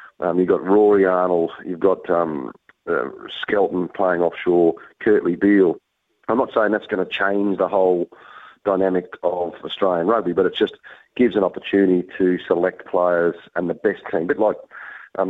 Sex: male